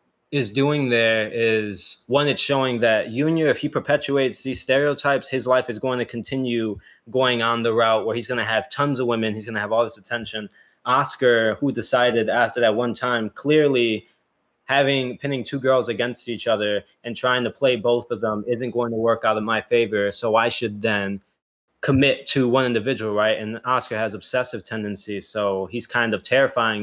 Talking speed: 195 wpm